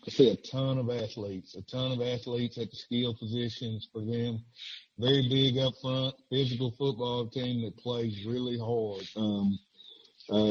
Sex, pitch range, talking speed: male, 110-125 Hz, 165 wpm